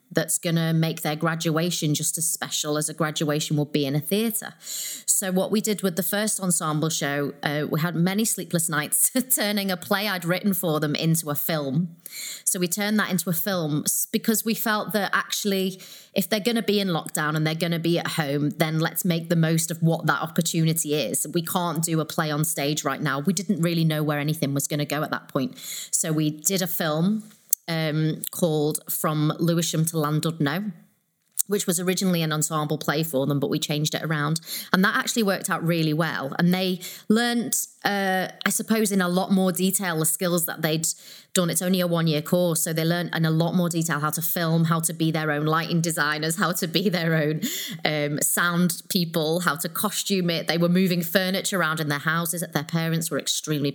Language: English